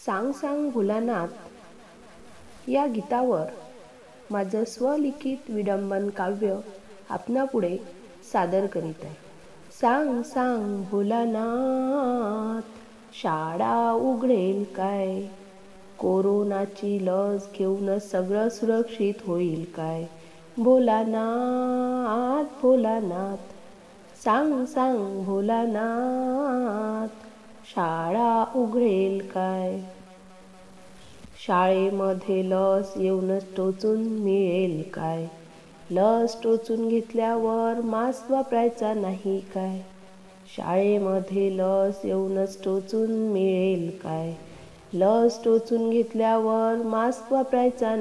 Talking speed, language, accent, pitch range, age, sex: 70 wpm, Marathi, native, 195-235 Hz, 30-49, female